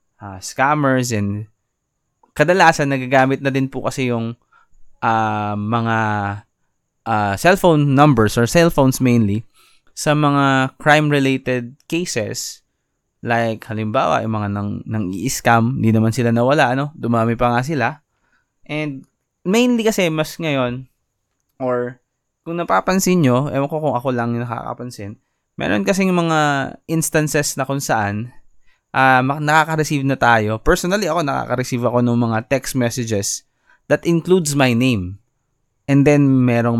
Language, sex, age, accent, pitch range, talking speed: Filipino, male, 20-39, native, 115-150 Hz, 130 wpm